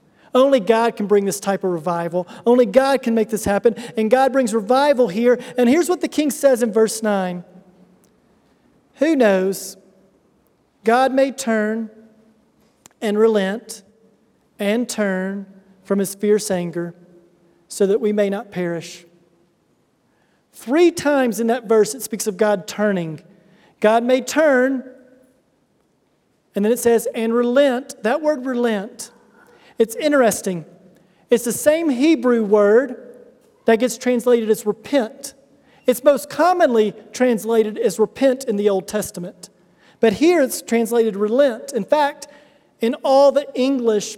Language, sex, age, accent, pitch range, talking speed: English, male, 40-59, American, 210-265 Hz, 140 wpm